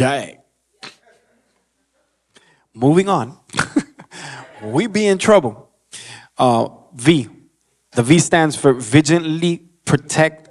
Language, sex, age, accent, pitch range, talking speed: English, male, 20-39, American, 130-160 Hz, 80 wpm